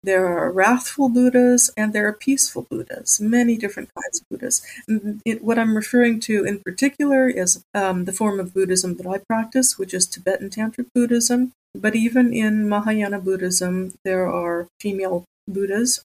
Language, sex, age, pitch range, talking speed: English, female, 40-59, 185-220 Hz, 160 wpm